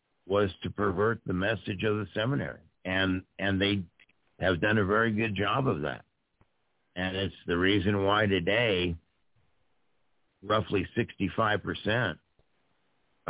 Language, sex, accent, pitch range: English, male, American, 90-105 Hz